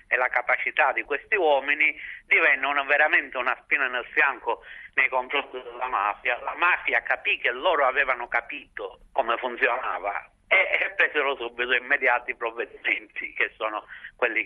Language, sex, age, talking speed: Italian, male, 50-69, 145 wpm